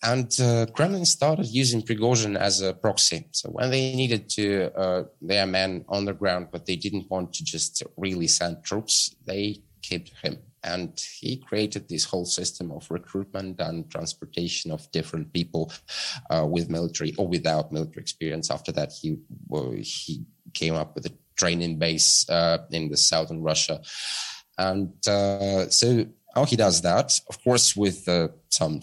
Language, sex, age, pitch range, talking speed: English, male, 30-49, 80-100 Hz, 165 wpm